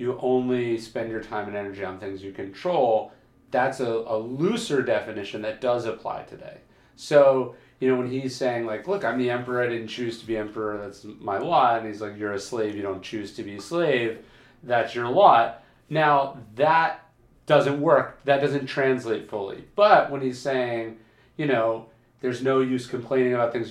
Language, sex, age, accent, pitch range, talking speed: English, male, 40-59, American, 110-135 Hz, 190 wpm